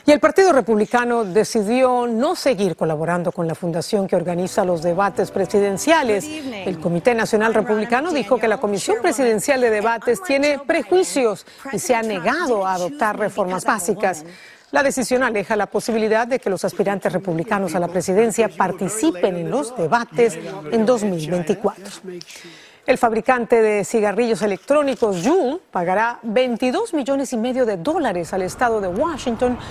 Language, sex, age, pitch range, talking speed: Spanish, female, 40-59, 185-250 Hz, 145 wpm